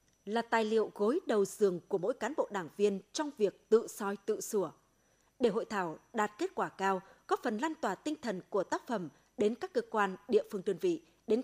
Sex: female